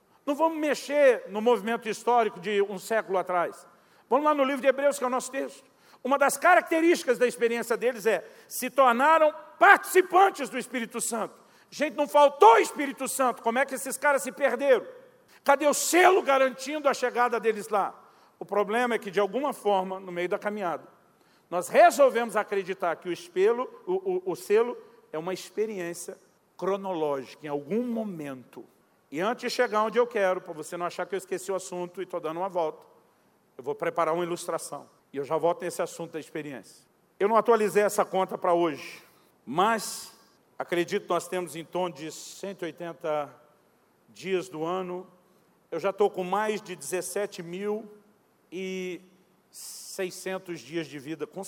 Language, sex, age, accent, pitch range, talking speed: Portuguese, male, 50-69, Brazilian, 180-265 Hz, 170 wpm